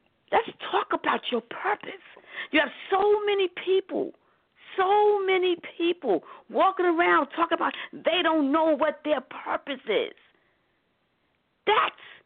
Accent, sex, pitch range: American, female, 280-410 Hz